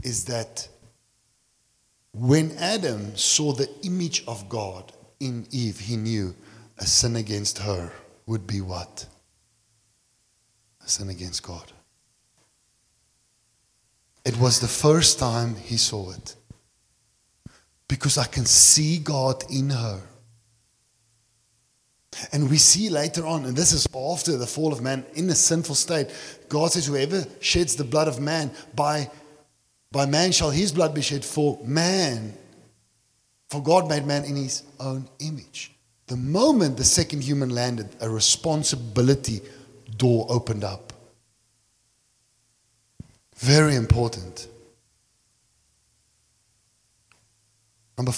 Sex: male